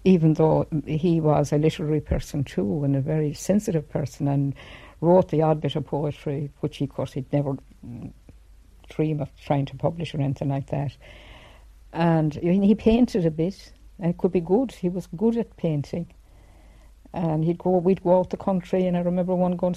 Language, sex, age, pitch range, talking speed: English, female, 60-79, 140-175 Hz, 190 wpm